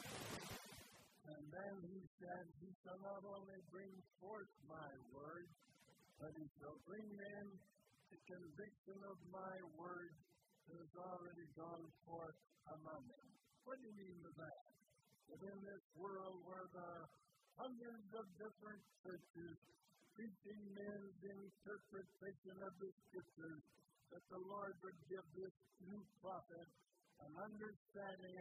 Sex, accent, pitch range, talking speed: male, American, 170-200 Hz, 130 wpm